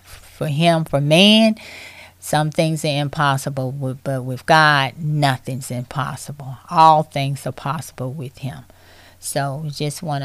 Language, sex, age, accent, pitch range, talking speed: English, female, 30-49, American, 140-195 Hz, 130 wpm